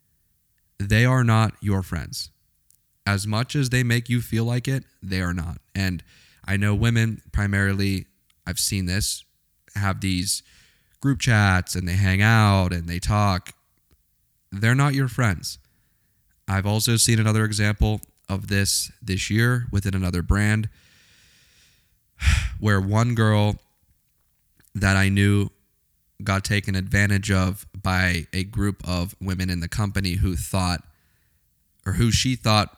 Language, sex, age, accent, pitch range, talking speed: English, male, 20-39, American, 90-105 Hz, 140 wpm